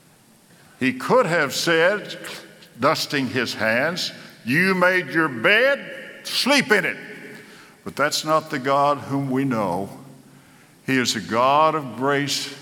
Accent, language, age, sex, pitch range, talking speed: American, English, 60-79, male, 140-180 Hz, 135 wpm